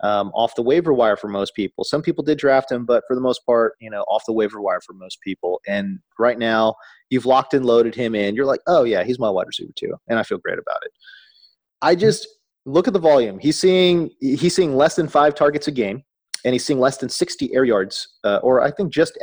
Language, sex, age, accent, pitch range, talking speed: English, male, 30-49, American, 115-170 Hz, 250 wpm